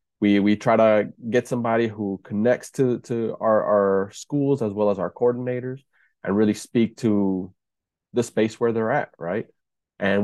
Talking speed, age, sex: 170 wpm, 20-39, male